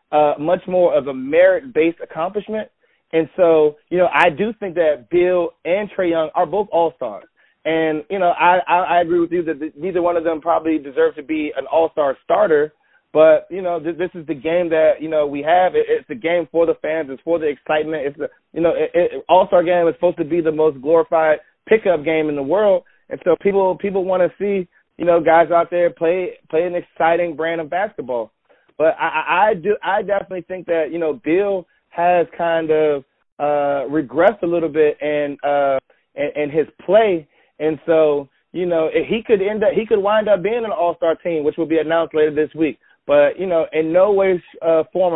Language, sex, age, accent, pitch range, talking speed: English, male, 30-49, American, 155-185 Hz, 225 wpm